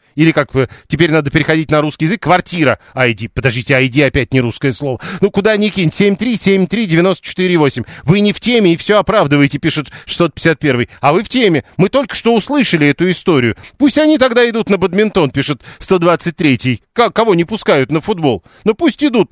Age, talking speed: 40-59, 175 wpm